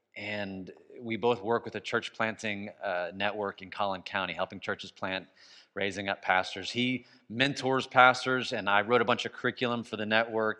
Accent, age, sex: American, 30-49, male